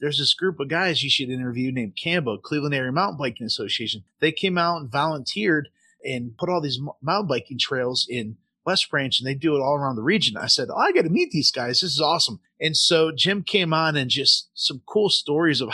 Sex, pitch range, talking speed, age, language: male, 130-165 Hz, 235 wpm, 30-49, English